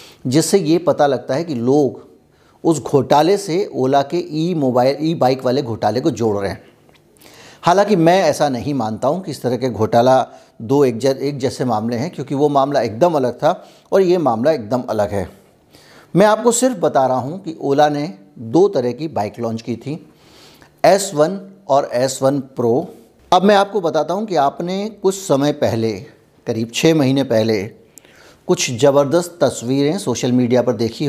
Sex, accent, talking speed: male, native, 175 wpm